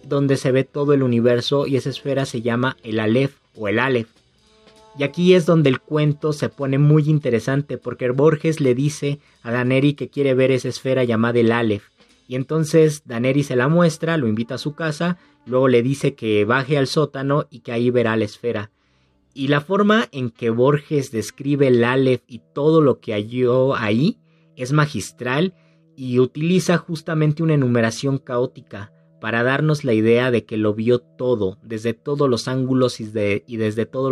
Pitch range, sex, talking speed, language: 115-150 Hz, male, 185 wpm, Spanish